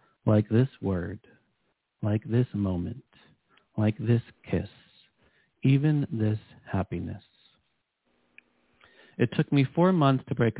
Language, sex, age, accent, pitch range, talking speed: English, male, 40-59, American, 105-130 Hz, 110 wpm